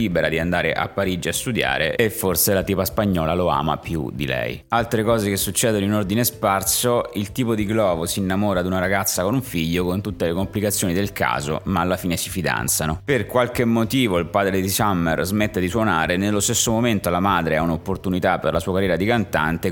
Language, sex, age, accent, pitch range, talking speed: Italian, male, 30-49, native, 85-105 Hz, 210 wpm